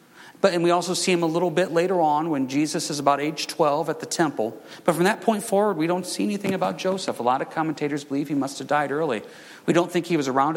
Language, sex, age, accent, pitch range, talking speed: English, male, 40-59, American, 130-185 Hz, 265 wpm